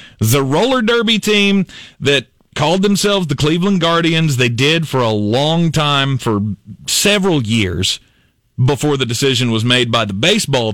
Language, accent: English, American